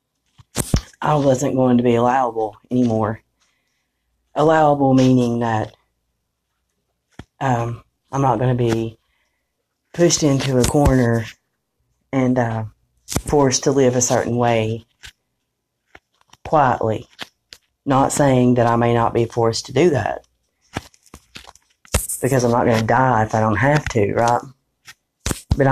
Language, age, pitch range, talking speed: English, 40-59, 115-135 Hz, 125 wpm